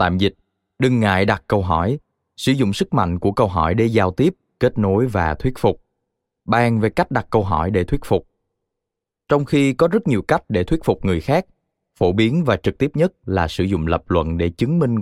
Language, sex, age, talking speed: Vietnamese, male, 20-39, 225 wpm